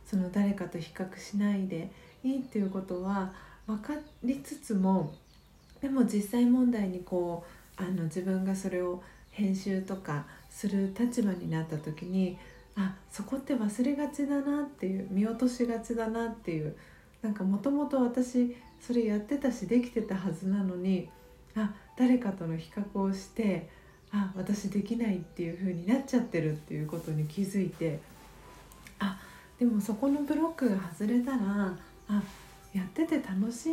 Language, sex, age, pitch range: Japanese, female, 40-59, 185-245 Hz